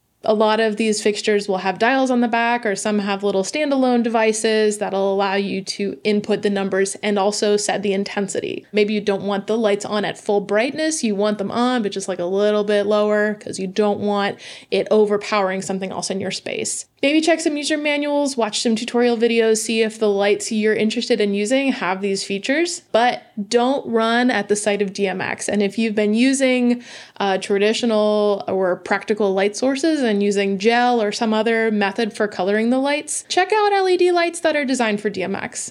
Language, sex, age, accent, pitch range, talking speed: English, female, 20-39, American, 200-235 Hz, 200 wpm